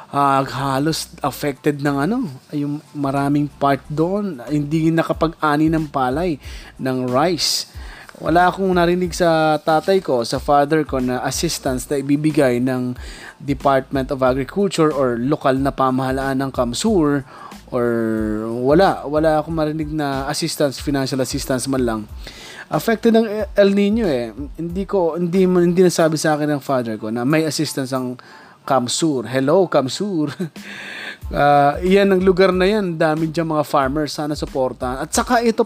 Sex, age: male, 20-39